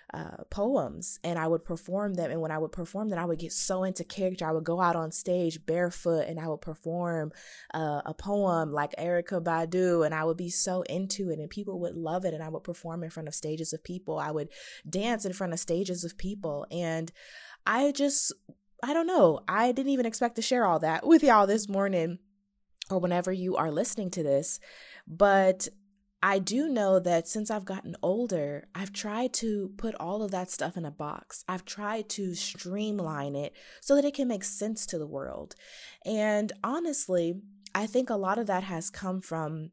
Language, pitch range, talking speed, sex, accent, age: English, 165-205 Hz, 205 wpm, female, American, 20-39